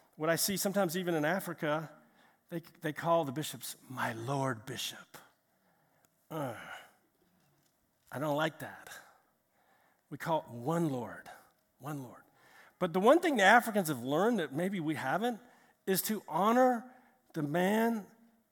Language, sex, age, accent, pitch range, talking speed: English, male, 50-69, American, 155-210 Hz, 145 wpm